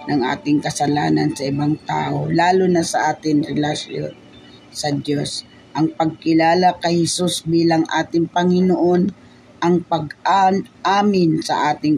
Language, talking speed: Filipino, 120 wpm